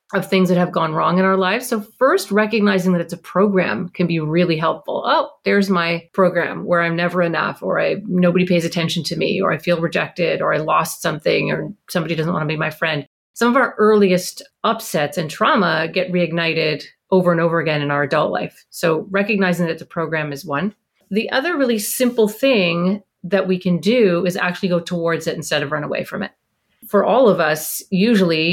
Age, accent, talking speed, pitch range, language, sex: 30-49, American, 210 wpm, 170-205 Hz, English, female